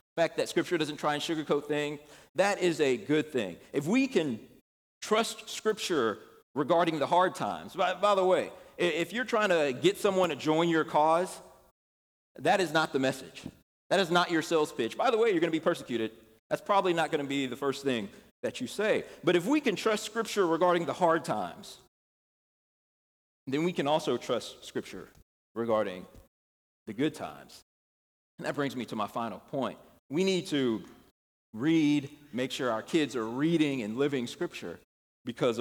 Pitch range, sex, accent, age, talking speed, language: 130-180 Hz, male, American, 40-59, 185 wpm, English